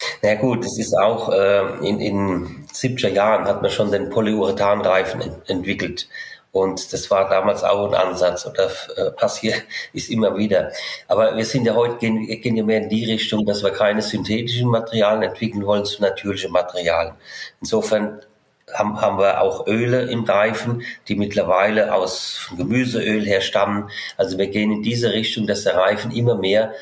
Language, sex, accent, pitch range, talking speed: German, male, German, 100-115 Hz, 170 wpm